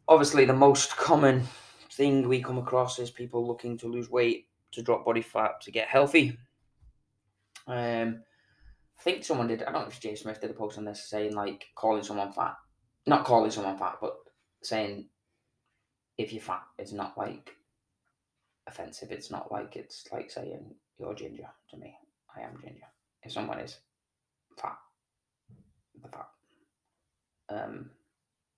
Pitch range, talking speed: 105-130 Hz, 155 wpm